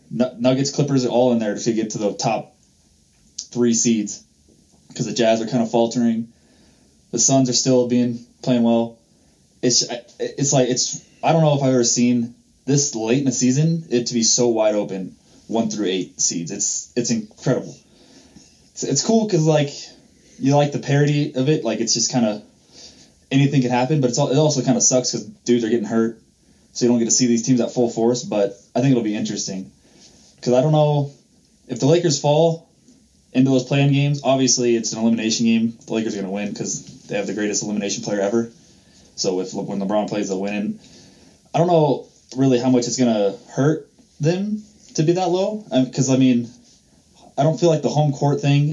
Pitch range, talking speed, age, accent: 115-140 Hz, 210 wpm, 20-39, American